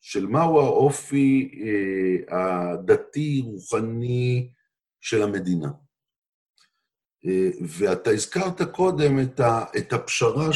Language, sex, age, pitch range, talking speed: Hebrew, male, 50-69, 90-140 Hz, 85 wpm